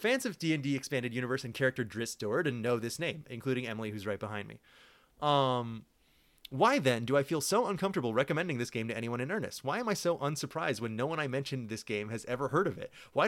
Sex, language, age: male, English, 30-49